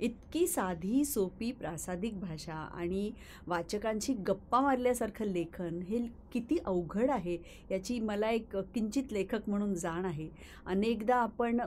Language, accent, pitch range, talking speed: Marathi, native, 170-205 Hz, 100 wpm